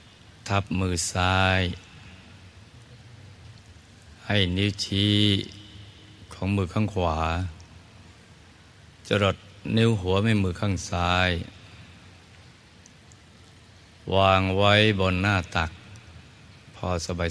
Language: Thai